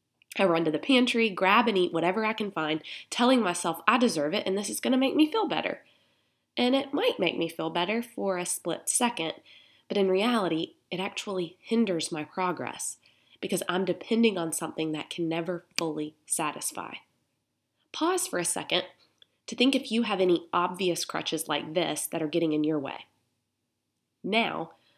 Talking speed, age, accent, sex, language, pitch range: 185 wpm, 20-39, American, female, English, 155-205 Hz